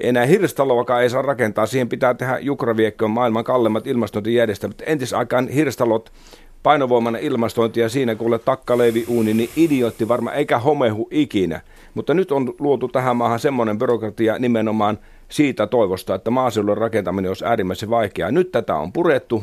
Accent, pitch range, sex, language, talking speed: native, 105-125 Hz, male, Finnish, 140 wpm